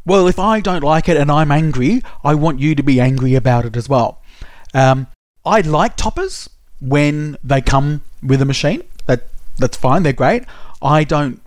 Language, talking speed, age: English, 190 wpm, 30-49